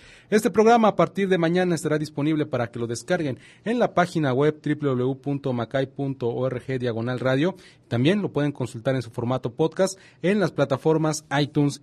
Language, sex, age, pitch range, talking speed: English, male, 40-59, 130-165 Hz, 150 wpm